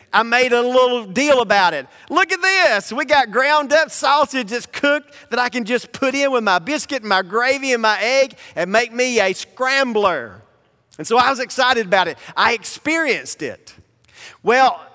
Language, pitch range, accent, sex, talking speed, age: English, 200-255 Hz, American, male, 195 wpm, 40-59